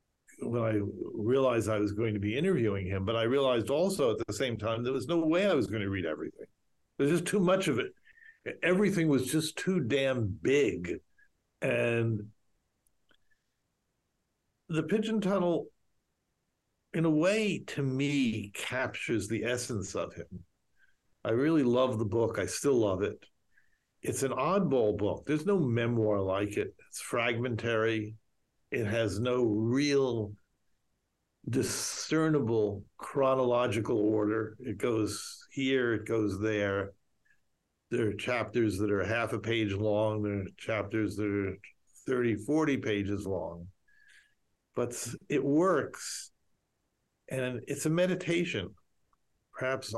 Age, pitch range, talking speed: 50-69, 105-140 Hz, 135 wpm